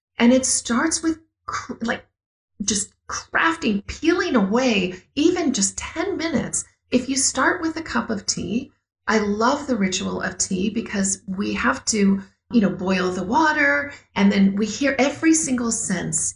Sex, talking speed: female, 160 wpm